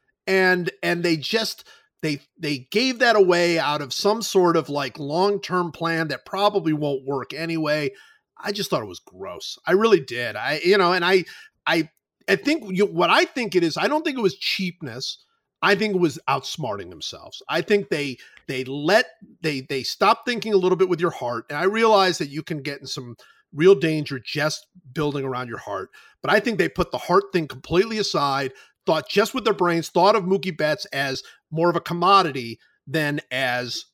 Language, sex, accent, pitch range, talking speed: English, male, American, 145-195 Hz, 200 wpm